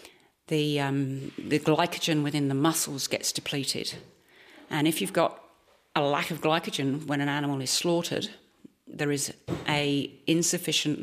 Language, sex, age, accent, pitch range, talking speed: English, female, 40-59, British, 135-160 Hz, 140 wpm